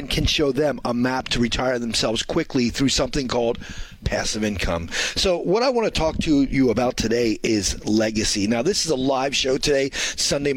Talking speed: 195 wpm